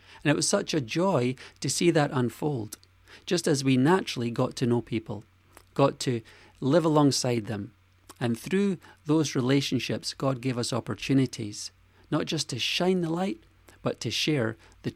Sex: male